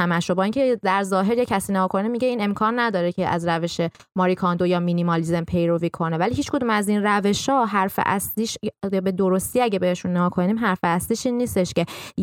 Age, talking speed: 20-39, 200 wpm